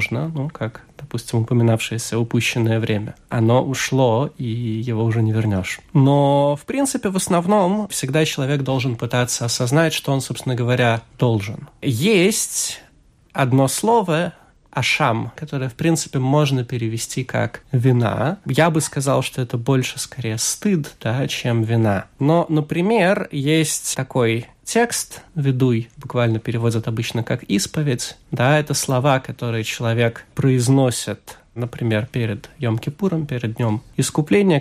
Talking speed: 130 wpm